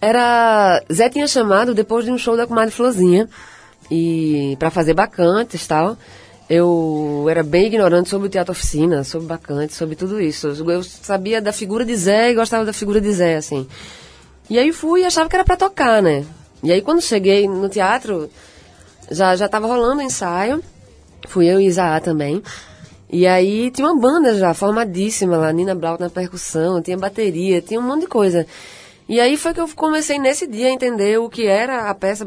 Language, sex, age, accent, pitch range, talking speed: Portuguese, female, 20-39, Brazilian, 175-240 Hz, 190 wpm